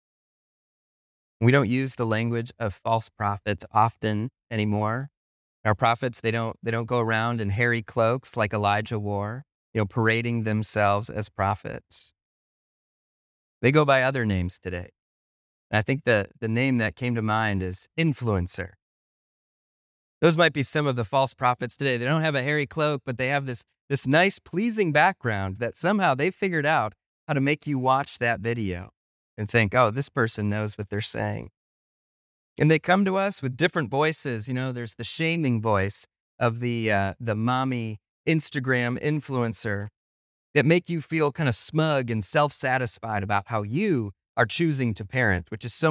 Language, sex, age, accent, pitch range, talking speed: English, male, 30-49, American, 105-135 Hz, 175 wpm